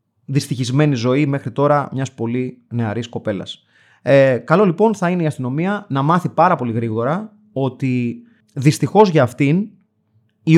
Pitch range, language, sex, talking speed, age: 125-185 Hz, Greek, male, 140 wpm, 30-49